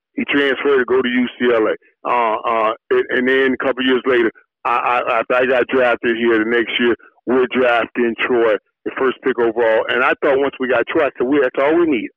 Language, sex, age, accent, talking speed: English, male, 40-59, American, 215 wpm